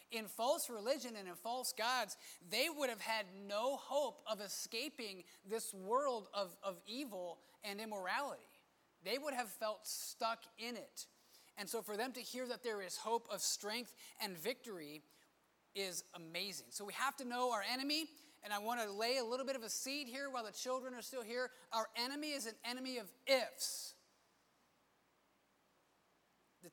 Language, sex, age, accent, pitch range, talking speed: English, male, 30-49, American, 205-255 Hz, 175 wpm